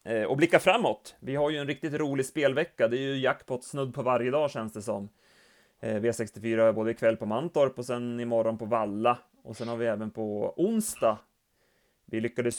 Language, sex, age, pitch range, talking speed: Swedish, male, 30-49, 110-130 Hz, 195 wpm